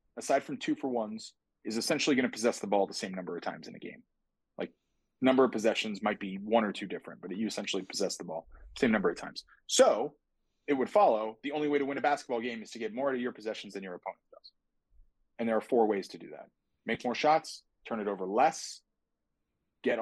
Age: 30-49